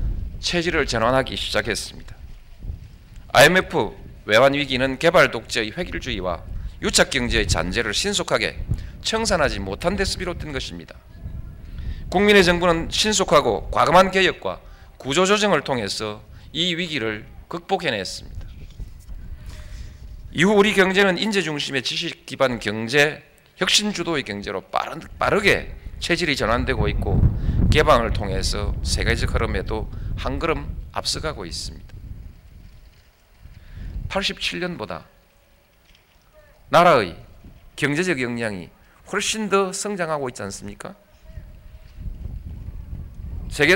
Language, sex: Korean, male